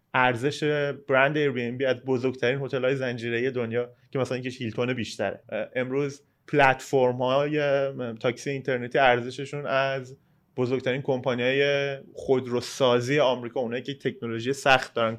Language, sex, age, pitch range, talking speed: Persian, male, 30-49, 125-150 Hz, 130 wpm